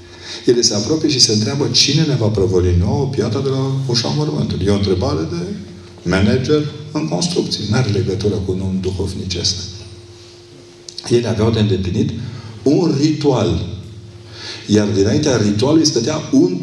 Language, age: Romanian, 50-69